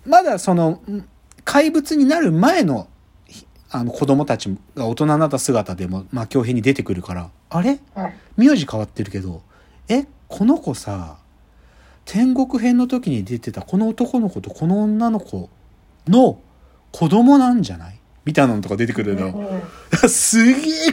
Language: Japanese